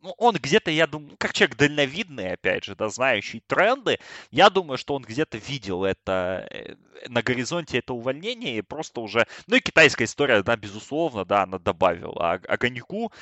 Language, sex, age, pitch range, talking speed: Russian, male, 20-39, 95-130 Hz, 165 wpm